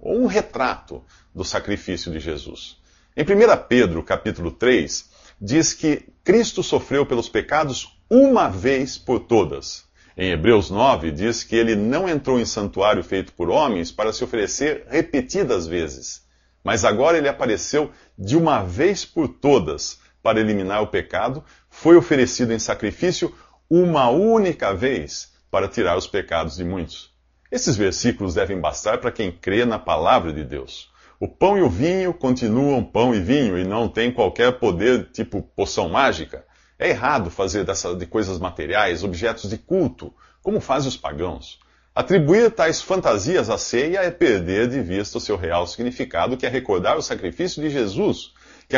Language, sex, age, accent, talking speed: English, male, 50-69, Brazilian, 155 wpm